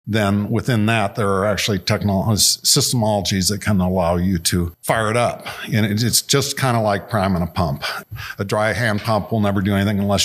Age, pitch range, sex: 50-69, 95-115 Hz, male